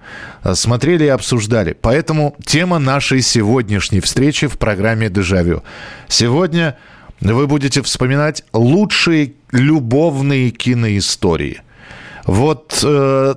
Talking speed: 85 wpm